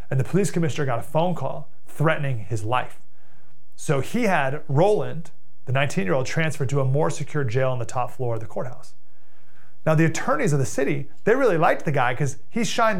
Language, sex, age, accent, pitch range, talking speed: English, male, 30-49, American, 145-180 Hz, 205 wpm